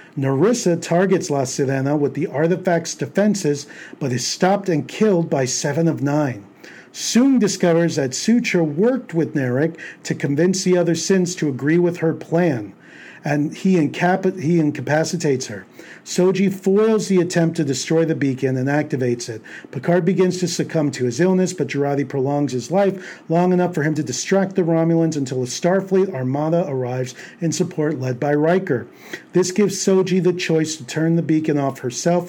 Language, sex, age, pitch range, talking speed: English, male, 50-69, 145-175 Hz, 170 wpm